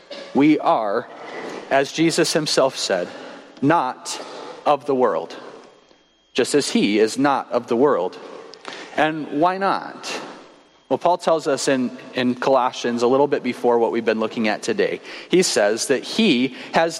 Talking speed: 150 wpm